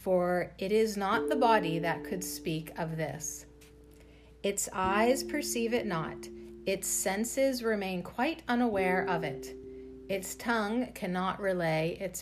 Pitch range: 145-215 Hz